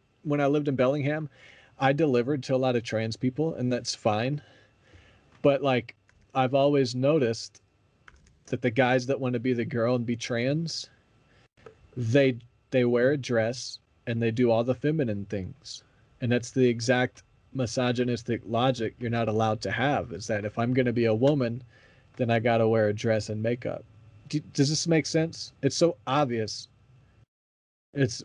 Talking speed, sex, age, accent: 175 wpm, male, 40-59, American